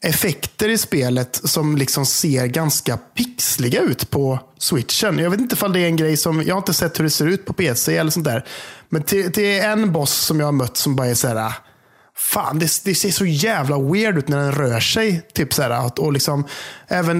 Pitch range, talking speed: 145-200 Hz, 225 wpm